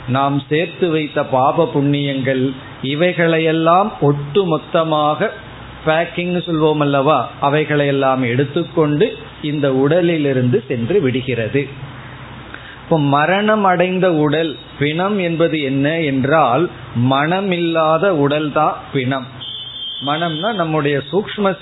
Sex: male